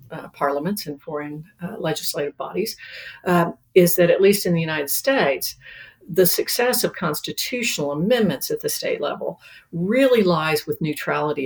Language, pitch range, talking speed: English, 145-185 Hz, 150 wpm